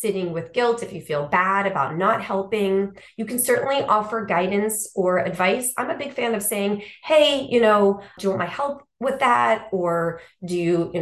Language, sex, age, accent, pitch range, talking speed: English, female, 30-49, American, 175-225 Hz, 200 wpm